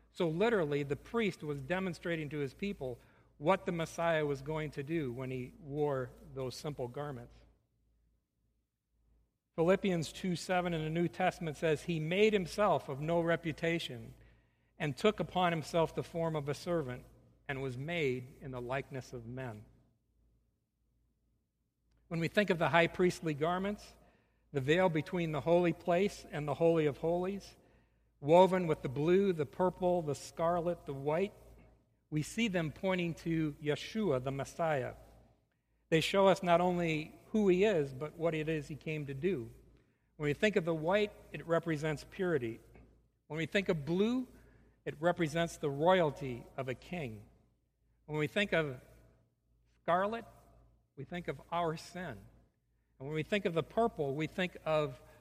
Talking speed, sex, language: 160 wpm, male, English